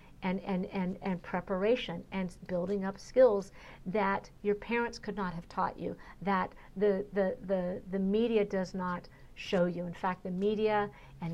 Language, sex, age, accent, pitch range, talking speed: English, female, 50-69, American, 185-210 Hz, 170 wpm